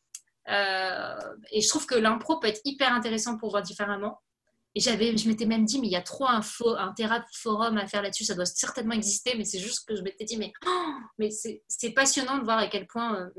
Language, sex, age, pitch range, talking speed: French, female, 30-49, 205-245 Hz, 240 wpm